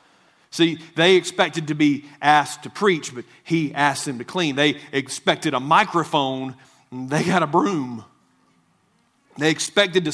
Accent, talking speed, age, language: American, 155 wpm, 40-59, English